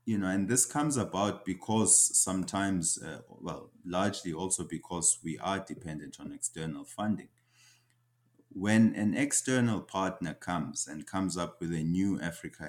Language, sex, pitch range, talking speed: English, male, 80-115 Hz, 145 wpm